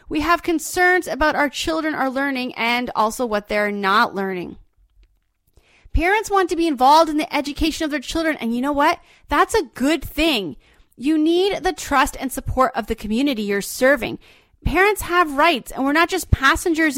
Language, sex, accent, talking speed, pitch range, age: English, female, American, 185 wpm, 245-330 Hz, 30-49